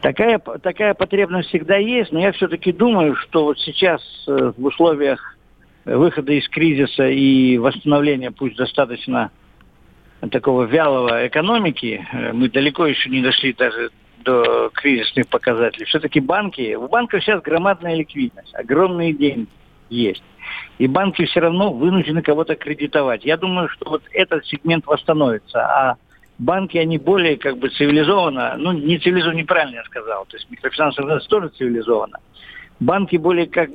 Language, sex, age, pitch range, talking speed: Russian, male, 50-69, 135-175 Hz, 140 wpm